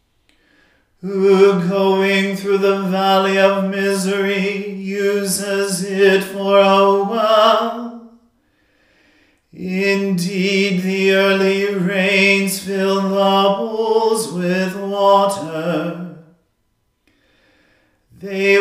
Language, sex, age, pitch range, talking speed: English, male, 40-59, 195-200 Hz, 70 wpm